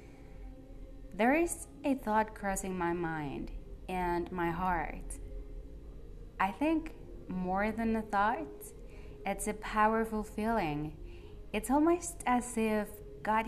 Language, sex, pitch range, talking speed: English, female, 165-215 Hz, 110 wpm